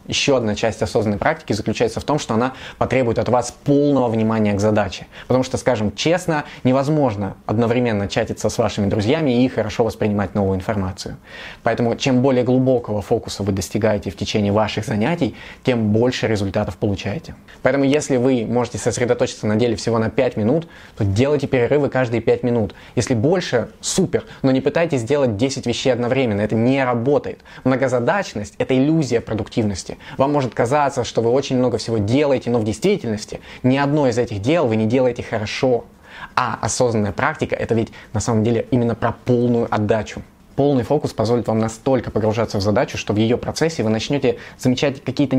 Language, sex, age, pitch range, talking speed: Russian, male, 20-39, 110-130 Hz, 170 wpm